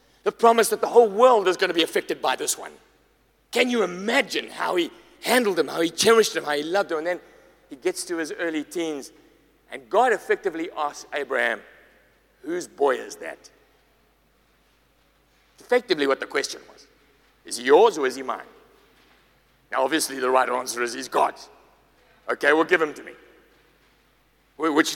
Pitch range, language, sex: 170-280 Hz, English, male